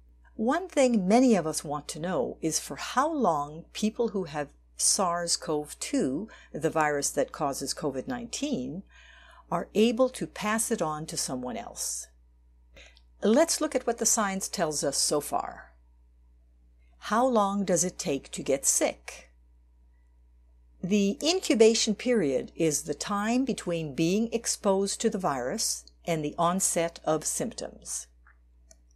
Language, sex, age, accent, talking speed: English, female, 60-79, American, 135 wpm